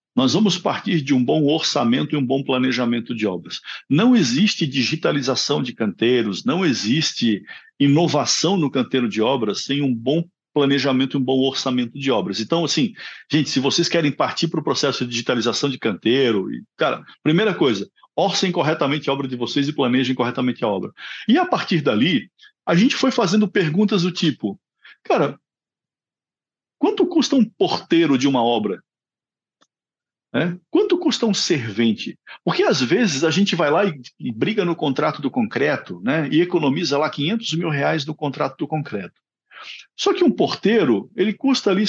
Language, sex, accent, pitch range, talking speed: Portuguese, male, Brazilian, 140-215 Hz, 170 wpm